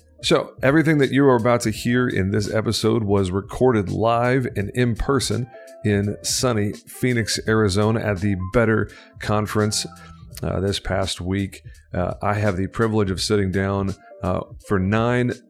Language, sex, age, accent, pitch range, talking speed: English, male, 40-59, American, 95-115 Hz, 155 wpm